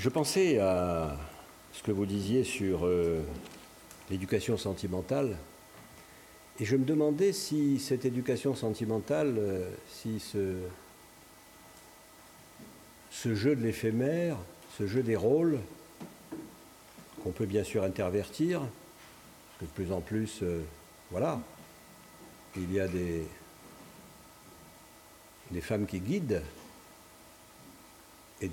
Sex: male